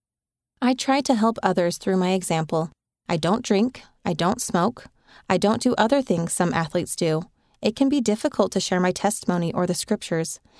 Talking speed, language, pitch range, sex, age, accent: 185 wpm, English, 175-225 Hz, female, 30-49, American